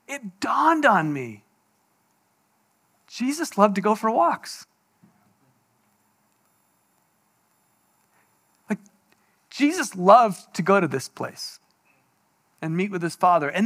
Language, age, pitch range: English, 40-59, 230-320 Hz